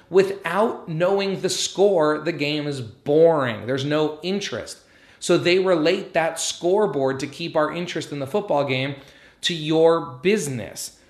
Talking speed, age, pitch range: 145 wpm, 30-49, 135-170 Hz